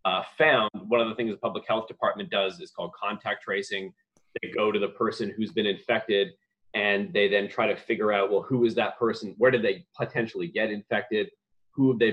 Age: 30-49